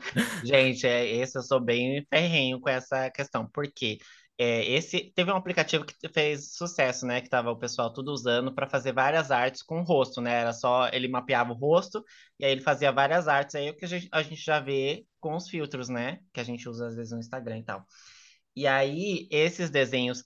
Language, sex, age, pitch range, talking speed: Portuguese, male, 20-39, 130-160 Hz, 220 wpm